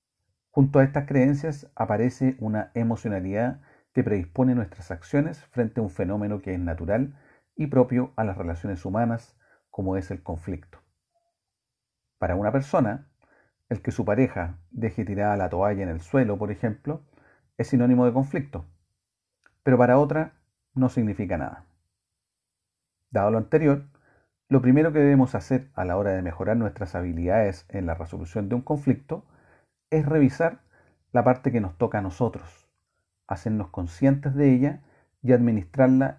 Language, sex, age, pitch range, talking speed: Spanish, male, 40-59, 95-130 Hz, 150 wpm